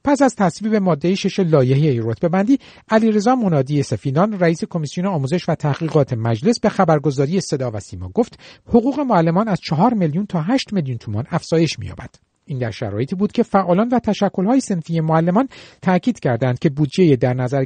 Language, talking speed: Persian, 170 wpm